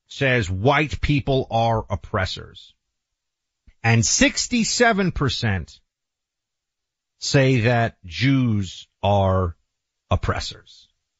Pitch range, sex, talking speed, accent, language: 105-155 Hz, male, 65 wpm, American, English